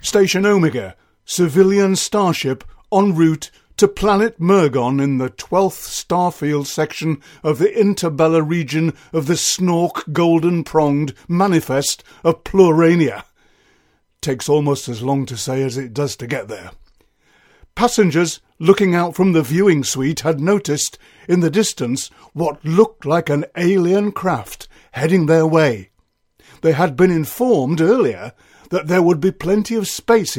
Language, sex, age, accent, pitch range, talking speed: English, male, 50-69, British, 140-185 Hz, 140 wpm